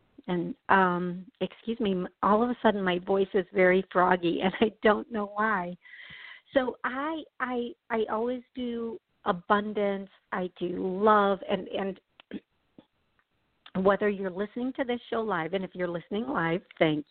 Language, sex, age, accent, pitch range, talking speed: English, female, 50-69, American, 180-220 Hz, 150 wpm